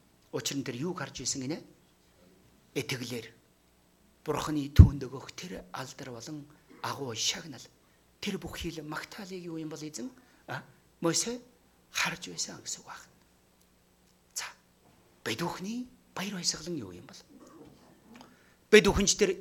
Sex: male